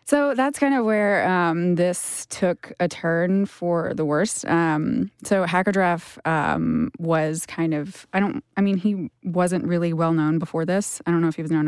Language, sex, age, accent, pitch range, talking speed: English, female, 20-39, American, 160-190 Hz, 190 wpm